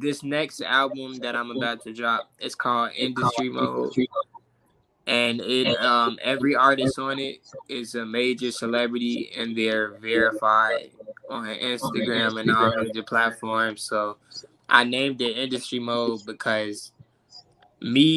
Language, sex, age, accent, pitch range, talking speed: English, male, 10-29, American, 115-130 Hz, 130 wpm